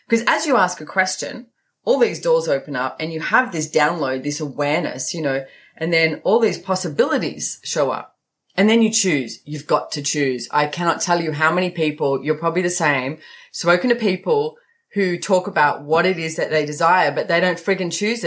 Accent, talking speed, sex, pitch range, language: Australian, 205 wpm, female, 150-205 Hz, English